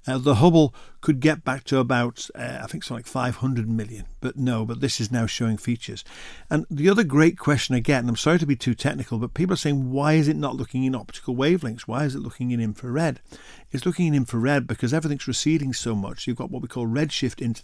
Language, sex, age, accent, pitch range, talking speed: English, male, 50-69, British, 115-135 Hz, 240 wpm